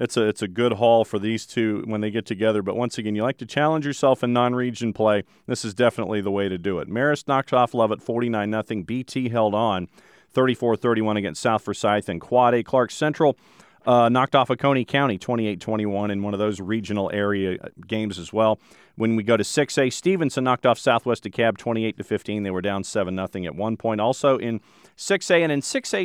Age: 40-59